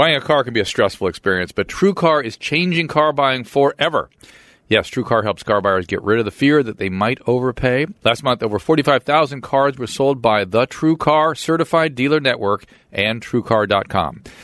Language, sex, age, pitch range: English, male, 40-59, 105-140 Hz